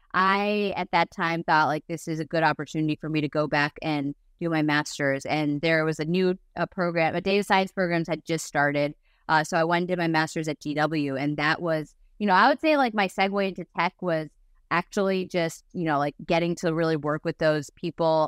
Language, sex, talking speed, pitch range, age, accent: English, female, 230 wpm, 155-185 Hz, 20-39, American